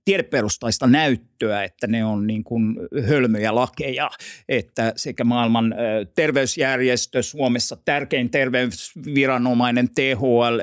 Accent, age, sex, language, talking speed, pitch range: native, 60-79, male, Finnish, 90 wpm, 120-180 Hz